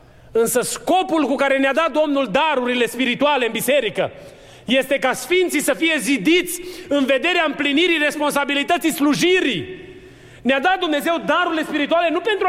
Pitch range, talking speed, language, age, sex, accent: 195-285 Hz, 140 wpm, Romanian, 30-49, male, native